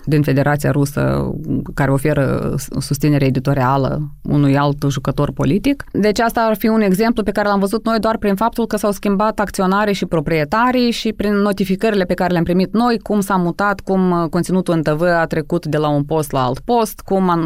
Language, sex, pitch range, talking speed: Romanian, female, 145-200 Hz, 195 wpm